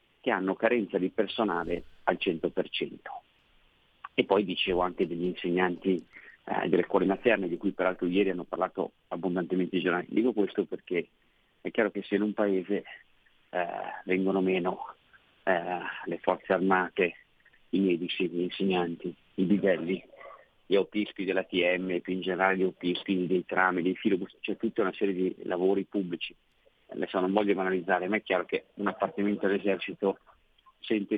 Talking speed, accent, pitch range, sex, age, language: 155 wpm, native, 90-100 Hz, male, 40-59, Italian